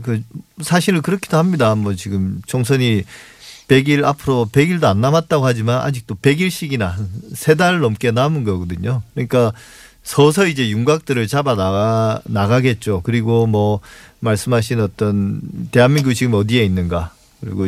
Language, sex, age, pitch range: Korean, male, 40-59, 110-140 Hz